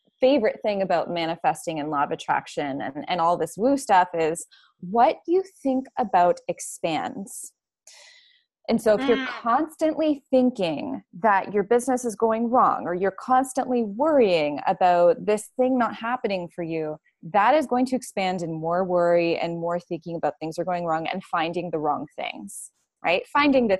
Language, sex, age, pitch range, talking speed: English, female, 20-39, 180-255 Hz, 170 wpm